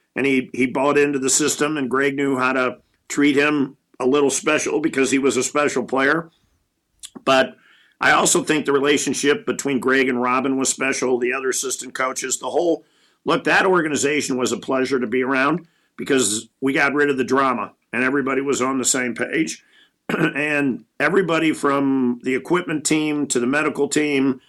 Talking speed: 185 wpm